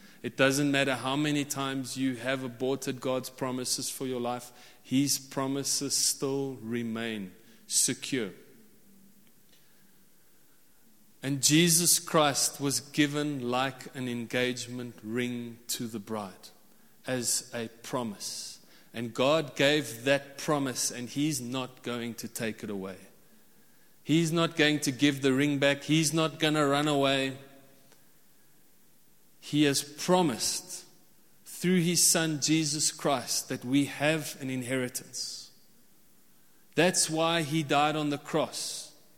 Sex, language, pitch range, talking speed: male, English, 130-170 Hz, 125 wpm